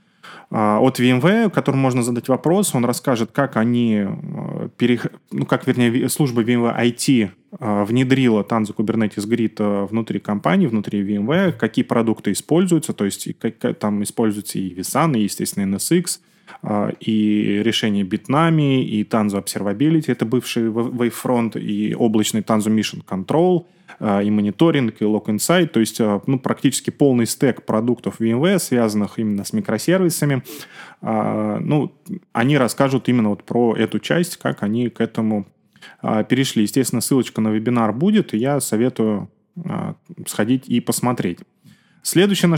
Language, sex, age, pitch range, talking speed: Russian, male, 20-39, 110-145 Hz, 130 wpm